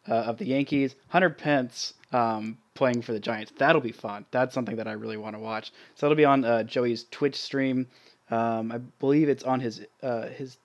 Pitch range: 115-140 Hz